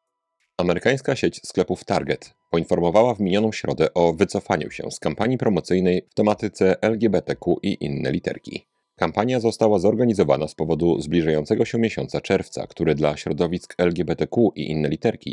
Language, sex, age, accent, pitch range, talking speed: Polish, male, 30-49, native, 85-110 Hz, 140 wpm